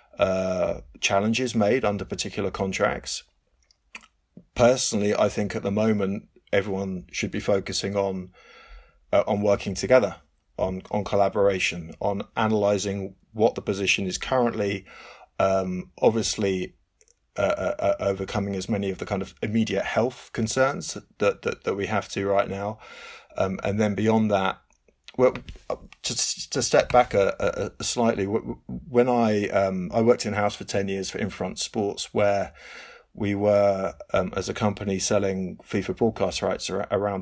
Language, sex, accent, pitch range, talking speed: English, male, British, 95-105 Hz, 145 wpm